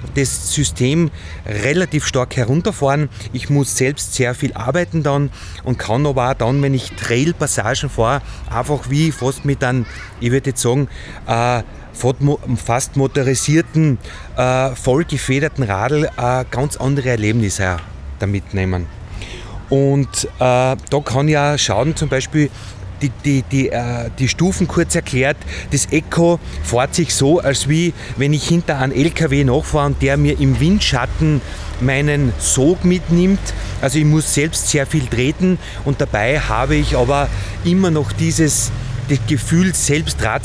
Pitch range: 120-150 Hz